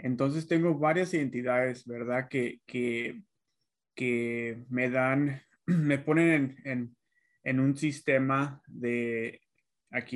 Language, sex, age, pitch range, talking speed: Spanish, male, 20-39, 125-140 Hz, 110 wpm